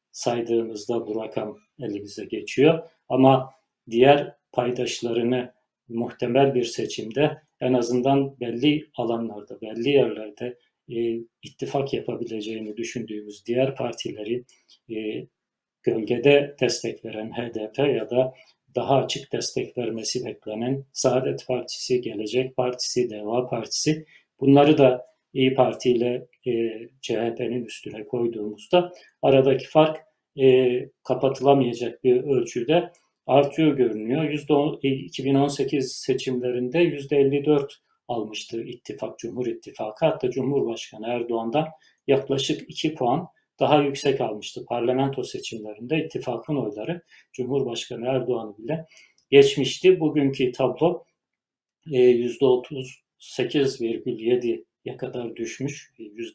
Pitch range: 120-145 Hz